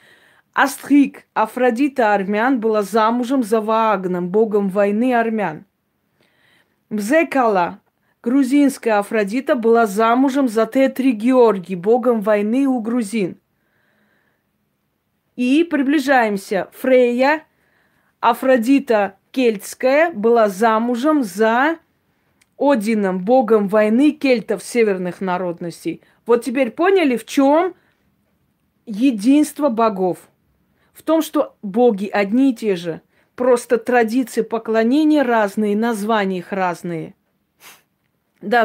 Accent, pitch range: native, 205-265 Hz